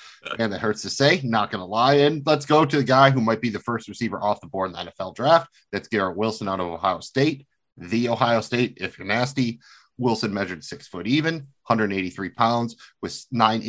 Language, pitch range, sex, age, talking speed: English, 100-125 Hz, male, 30-49, 220 wpm